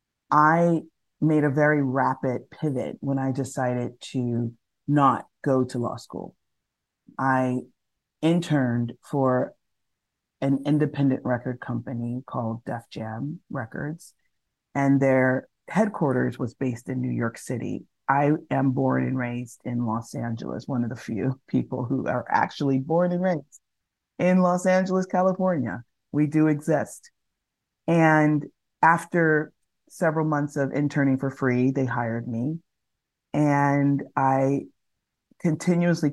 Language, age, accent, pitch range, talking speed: English, 30-49, American, 125-145 Hz, 125 wpm